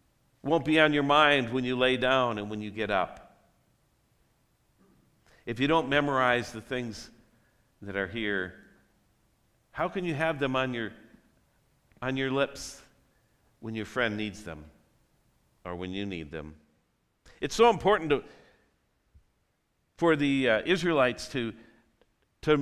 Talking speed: 140 wpm